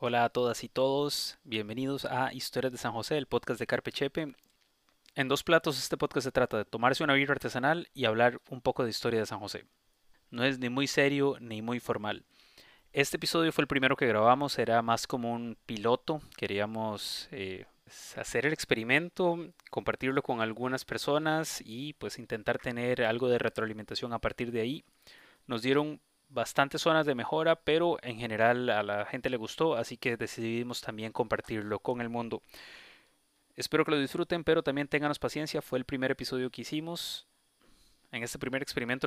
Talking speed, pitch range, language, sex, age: 180 wpm, 115-140 Hz, Spanish, male, 20-39